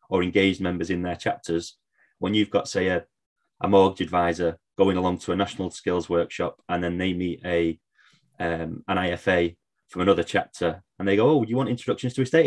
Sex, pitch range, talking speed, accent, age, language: male, 95-120 Hz, 195 wpm, British, 20-39, English